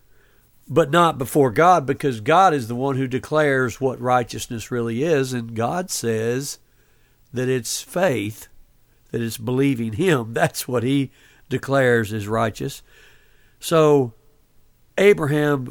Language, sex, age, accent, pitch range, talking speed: English, male, 60-79, American, 120-160 Hz, 125 wpm